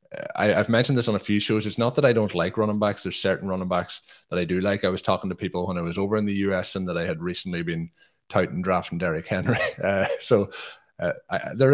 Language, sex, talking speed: English, male, 260 wpm